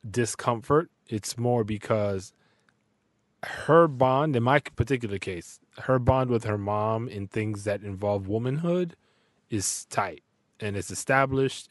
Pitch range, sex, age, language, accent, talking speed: 100-125 Hz, male, 20-39, English, American, 130 wpm